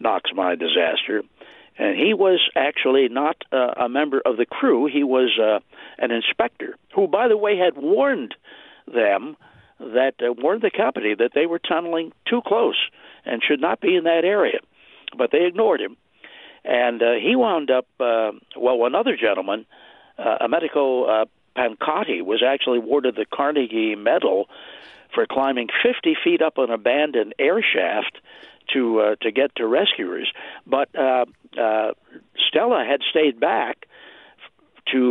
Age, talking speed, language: 60-79, 155 wpm, English